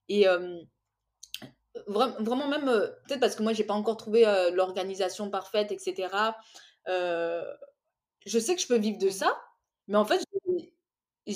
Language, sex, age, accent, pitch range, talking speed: French, female, 20-39, French, 205-260 Hz, 155 wpm